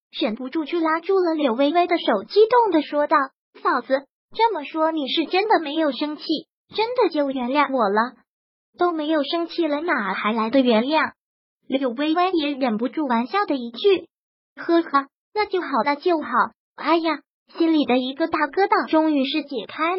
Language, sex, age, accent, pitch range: Chinese, male, 20-39, native, 270-335 Hz